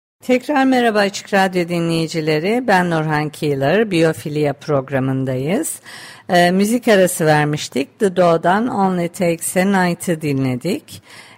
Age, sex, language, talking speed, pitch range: 50-69, female, Turkish, 105 wpm, 155-195 Hz